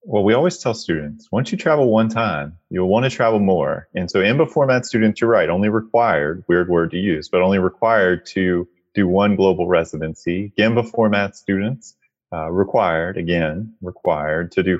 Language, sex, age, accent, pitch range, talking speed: English, male, 30-49, American, 95-115 Hz, 185 wpm